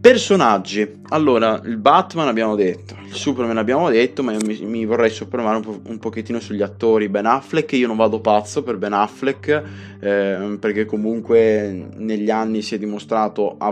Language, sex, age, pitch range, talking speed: Italian, male, 20-39, 100-115 Hz, 175 wpm